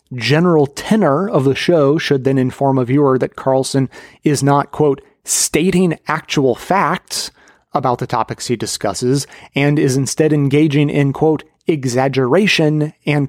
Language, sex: English, male